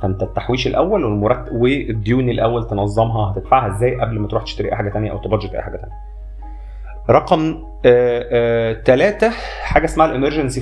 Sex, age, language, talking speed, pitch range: male, 30-49, Arabic, 145 wpm, 105-130 Hz